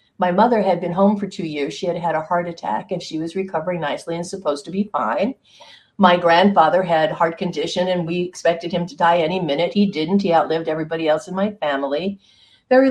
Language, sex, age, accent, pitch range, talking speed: English, female, 50-69, American, 165-200 Hz, 220 wpm